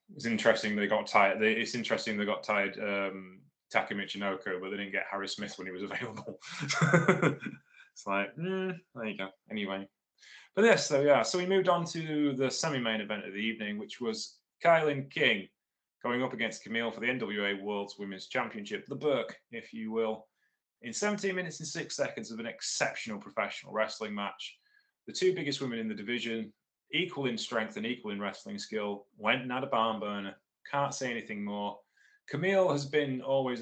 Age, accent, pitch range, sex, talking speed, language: 20-39, British, 105-155 Hz, male, 190 wpm, English